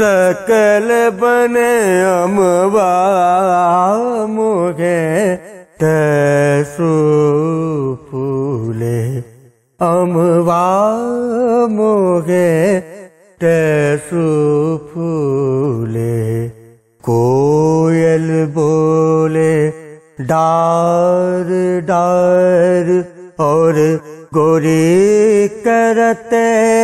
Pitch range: 160-235 Hz